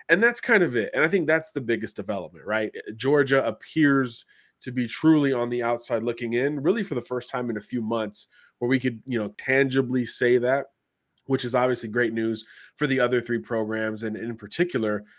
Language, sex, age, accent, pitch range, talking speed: English, male, 20-39, American, 110-130 Hz, 210 wpm